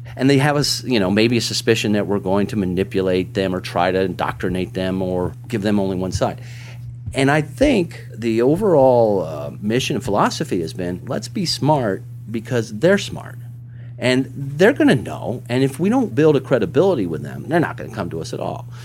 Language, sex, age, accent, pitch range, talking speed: English, male, 40-59, American, 110-130 Hz, 210 wpm